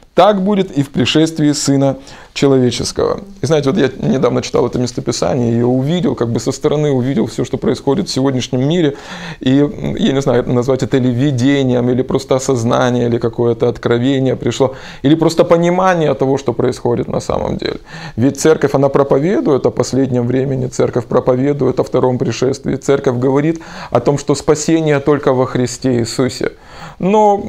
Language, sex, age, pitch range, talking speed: Russian, male, 20-39, 130-160 Hz, 165 wpm